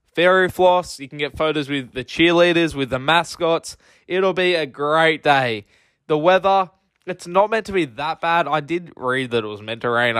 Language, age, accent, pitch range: English, 10-29, Australian, 135-170 Hz